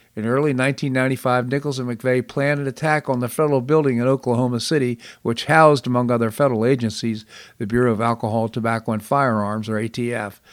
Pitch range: 110-135 Hz